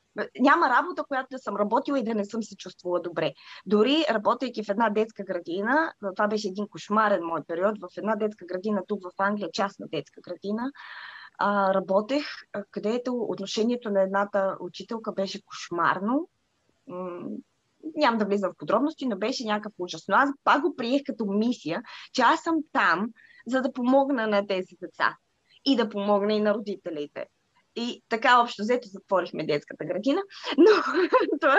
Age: 20-39